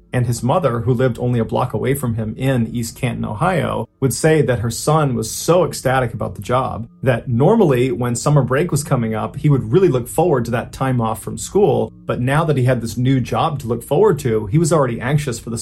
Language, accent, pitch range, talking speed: English, American, 115-140 Hz, 240 wpm